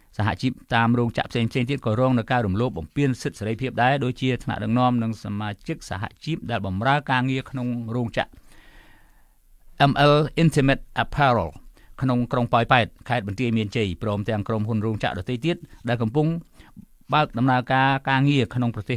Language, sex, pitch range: English, male, 110-135 Hz